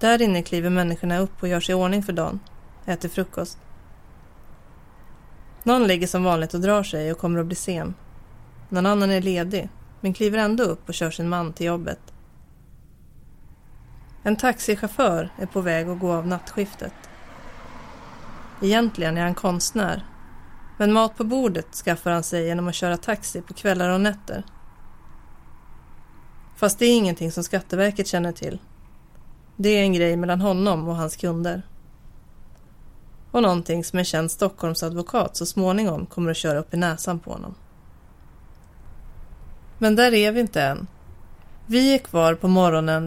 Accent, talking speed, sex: native, 155 wpm, female